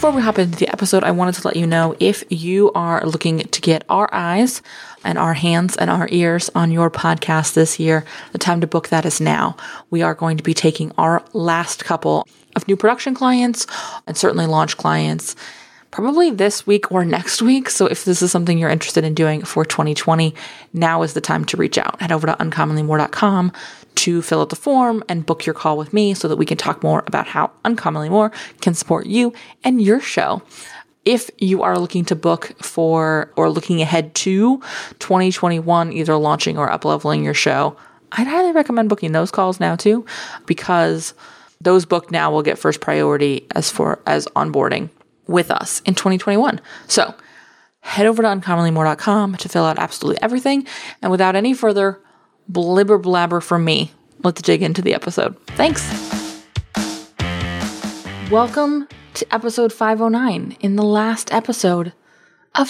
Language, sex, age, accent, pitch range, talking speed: English, female, 20-39, American, 160-220 Hz, 175 wpm